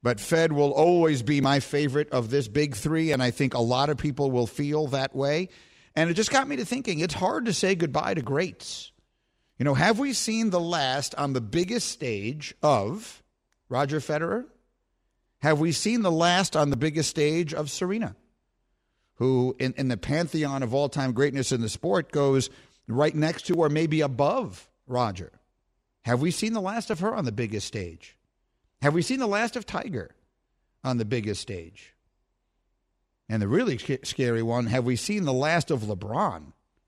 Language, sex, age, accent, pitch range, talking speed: English, male, 50-69, American, 120-160 Hz, 185 wpm